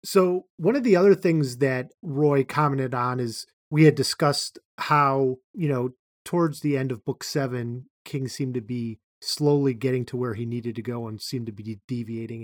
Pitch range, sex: 125-155 Hz, male